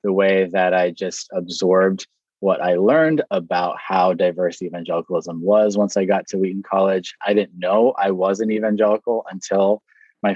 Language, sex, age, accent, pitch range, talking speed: English, male, 20-39, American, 95-110 Hz, 170 wpm